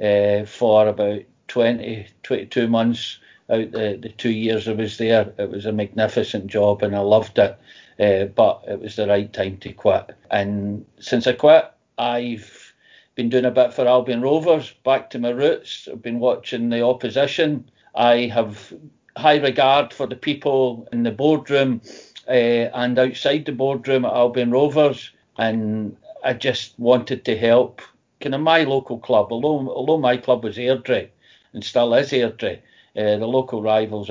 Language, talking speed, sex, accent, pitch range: English, 170 wpm, male, British, 110-125 Hz